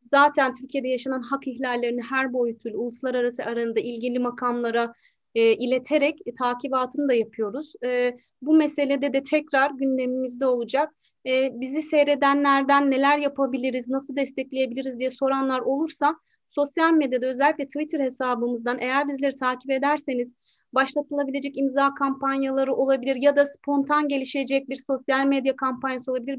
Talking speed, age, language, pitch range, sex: 125 wpm, 30-49, Turkish, 255-285 Hz, female